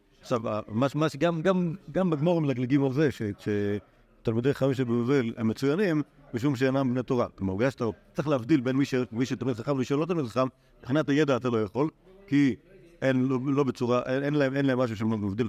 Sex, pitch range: male, 120-165 Hz